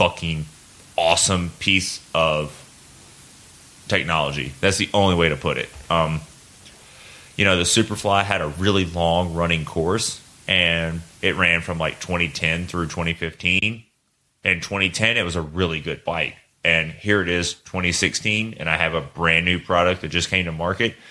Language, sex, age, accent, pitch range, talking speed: English, male, 30-49, American, 85-100 Hz, 160 wpm